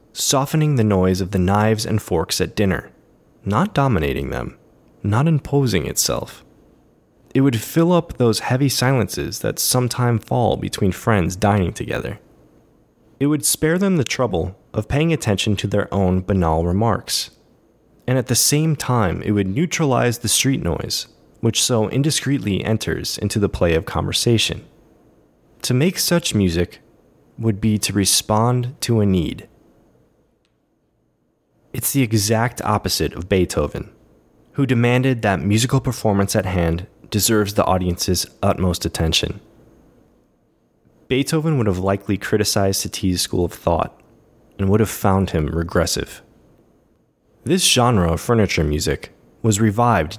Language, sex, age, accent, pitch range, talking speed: English, male, 20-39, American, 95-125 Hz, 135 wpm